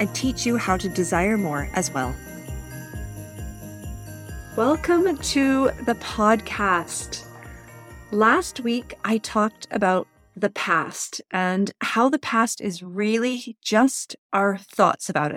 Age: 30-49